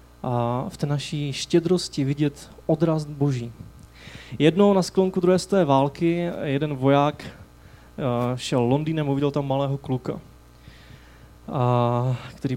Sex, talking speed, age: male, 115 wpm, 20-39